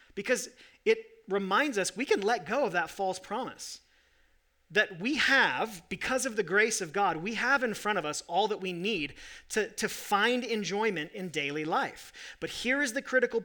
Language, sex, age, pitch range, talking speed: English, male, 40-59, 175-235 Hz, 190 wpm